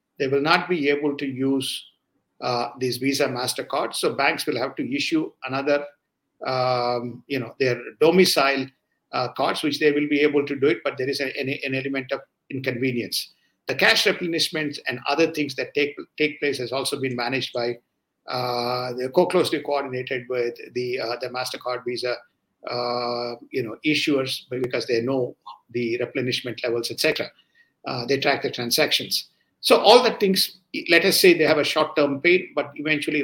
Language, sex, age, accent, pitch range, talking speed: English, male, 50-69, Indian, 130-160 Hz, 180 wpm